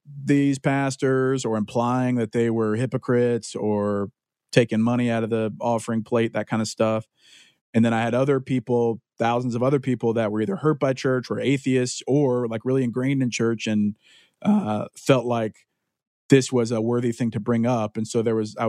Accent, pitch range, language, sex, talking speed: American, 110-130 Hz, English, male, 195 wpm